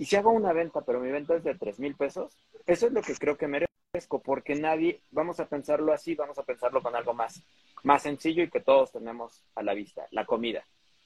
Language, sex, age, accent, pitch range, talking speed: Spanish, male, 40-59, Mexican, 135-210 Hz, 230 wpm